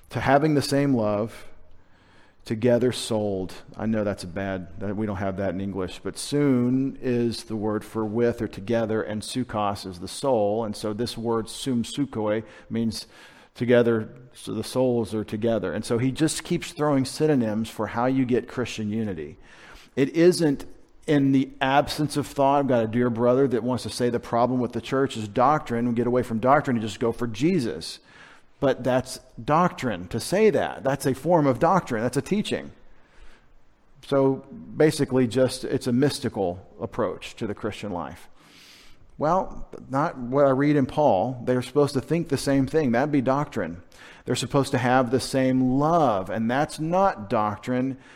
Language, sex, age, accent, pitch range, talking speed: English, male, 50-69, American, 110-135 Hz, 180 wpm